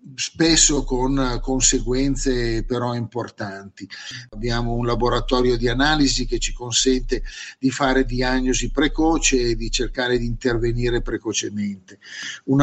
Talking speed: 115 wpm